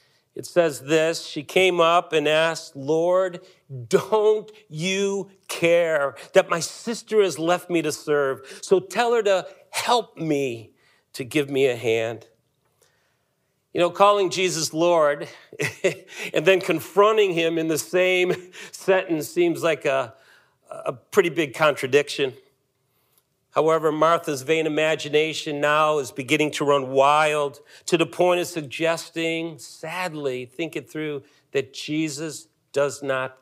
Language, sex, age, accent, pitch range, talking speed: English, male, 50-69, American, 145-185 Hz, 135 wpm